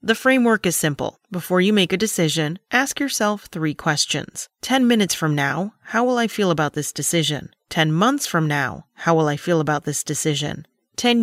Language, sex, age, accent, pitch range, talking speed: English, female, 30-49, American, 155-200 Hz, 190 wpm